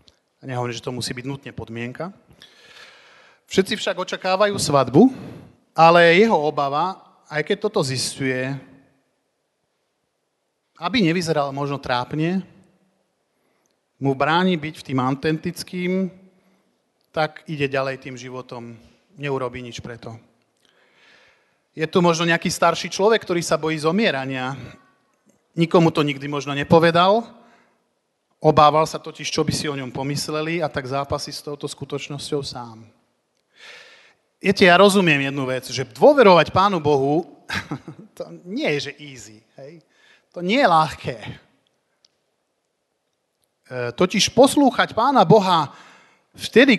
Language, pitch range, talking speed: Slovak, 135-185 Hz, 120 wpm